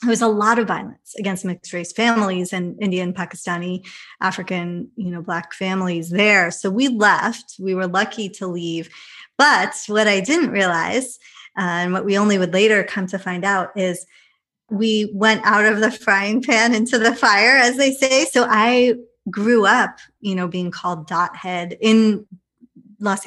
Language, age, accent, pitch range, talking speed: English, 30-49, American, 185-230 Hz, 175 wpm